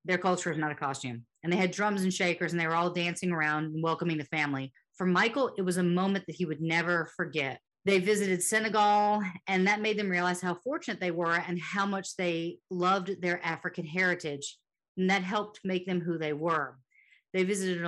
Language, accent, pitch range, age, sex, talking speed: English, American, 170-210 Hz, 40-59, female, 215 wpm